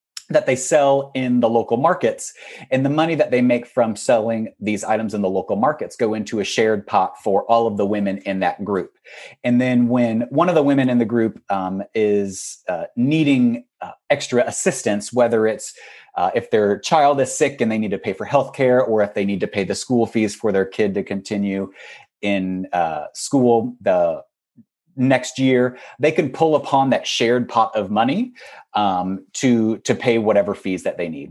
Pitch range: 100-130 Hz